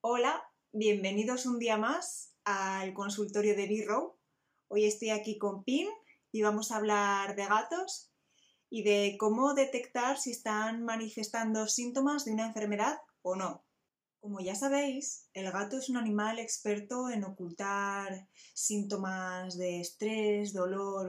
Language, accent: Spanish, Spanish